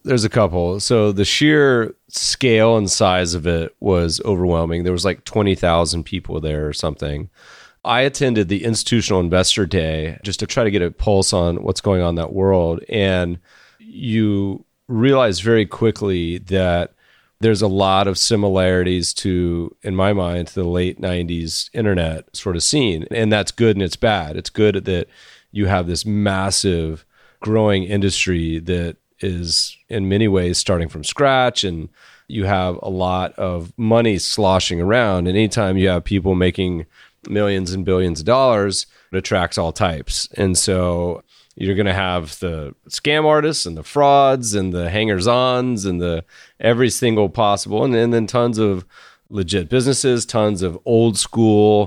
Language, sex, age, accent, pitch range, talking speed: English, male, 30-49, American, 90-110 Hz, 165 wpm